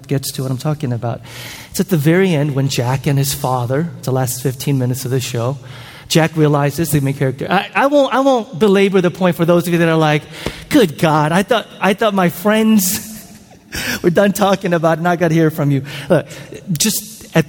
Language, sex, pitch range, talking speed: English, male, 125-155 Hz, 230 wpm